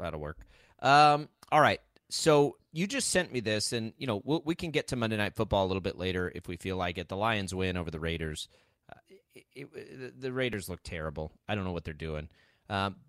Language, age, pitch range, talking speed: English, 30-49, 95-120 Hz, 220 wpm